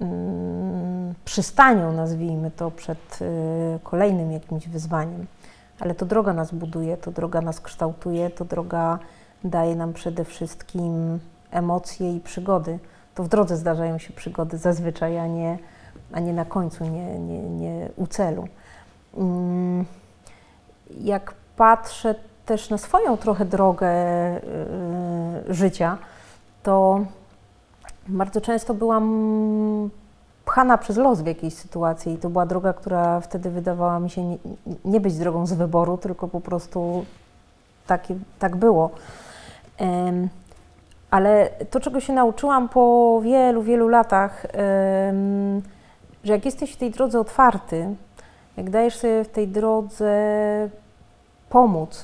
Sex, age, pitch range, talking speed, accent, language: female, 30-49, 170-210 Hz, 120 wpm, native, Polish